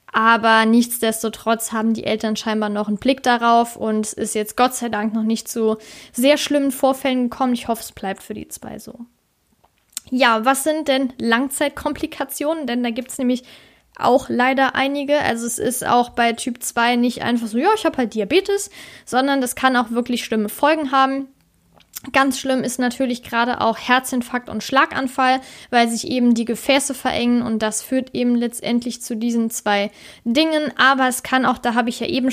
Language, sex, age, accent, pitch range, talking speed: German, female, 10-29, German, 235-270 Hz, 185 wpm